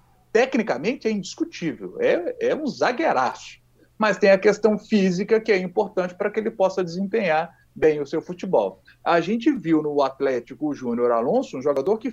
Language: Portuguese